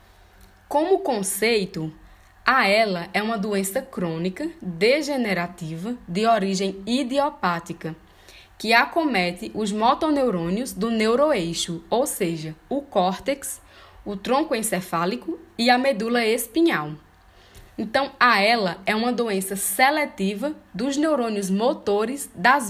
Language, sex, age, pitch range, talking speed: Portuguese, female, 10-29, 185-275 Hz, 105 wpm